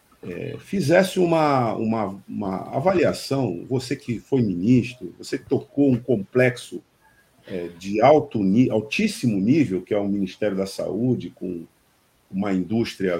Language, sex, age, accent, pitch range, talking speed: Portuguese, male, 50-69, Brazilian, 100-150 Hz, 125 wpm